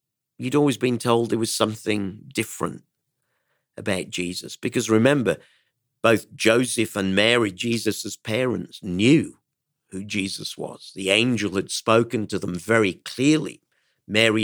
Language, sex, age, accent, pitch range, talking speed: English, male, 50-69, British, 100-130 Hz, 130 wpm